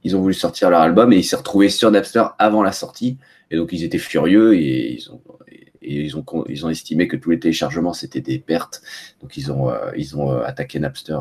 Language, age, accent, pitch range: French, 30-49, French, 80-100 Hz